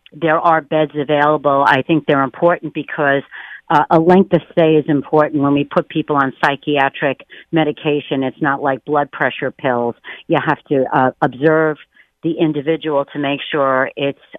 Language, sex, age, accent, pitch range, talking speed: English, female, 50-69, American, 130-150 Hz, 165 wpm